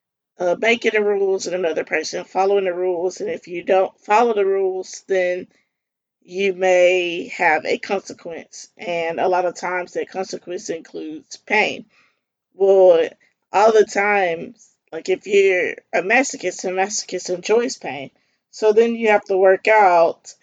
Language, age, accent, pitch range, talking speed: English, 20-39, American, 180-225 Hz, 155 wpm